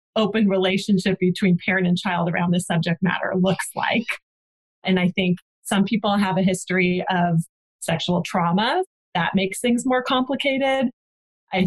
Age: 30-49